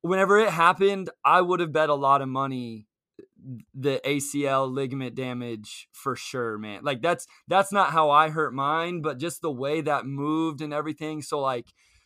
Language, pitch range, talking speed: English, 130-170 Hz, 180 wpm